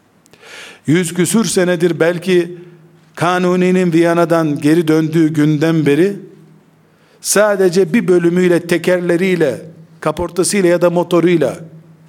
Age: 50-69